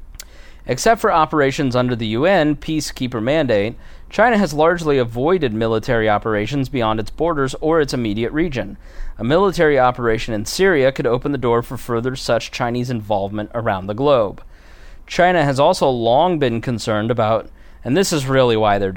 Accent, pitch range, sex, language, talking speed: American, 105-145 Hz, male, English, 160 wpm